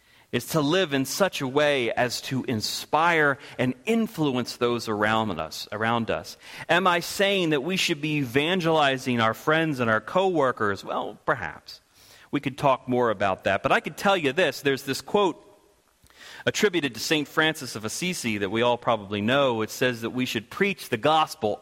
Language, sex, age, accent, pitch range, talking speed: English, male, 40-59, American, 115-155 Hz, 180 wpm